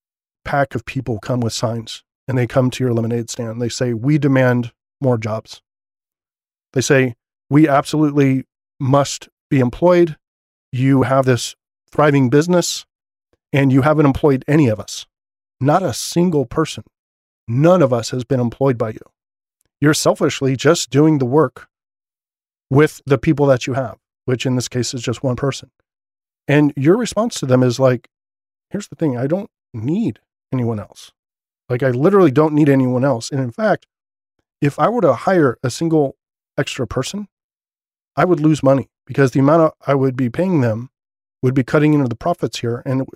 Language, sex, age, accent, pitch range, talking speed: English, male, 40-59, American, 125-150 Hz, 170 wpm